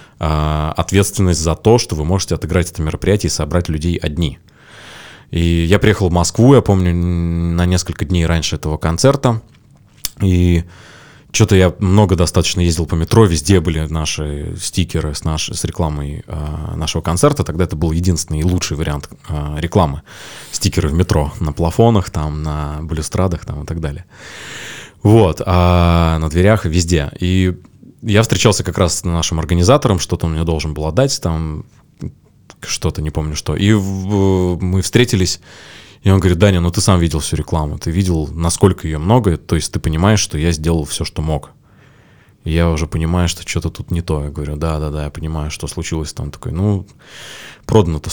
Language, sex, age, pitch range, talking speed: Russian, male, 20-39, 80-95 Hz, 170 wpm